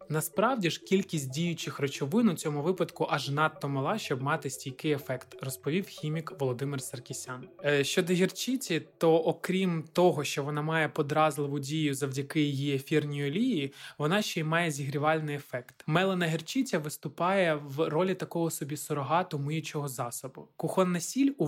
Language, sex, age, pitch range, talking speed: Ukrainian, male, 20-39, 145-175 Hz, 150 wpm